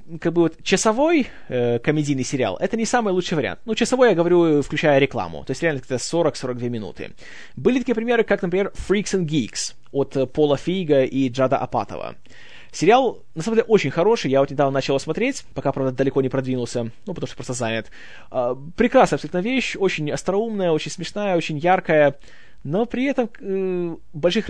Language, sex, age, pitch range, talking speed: Russian, male, 20-39, 135-195 Hz, 180 wpm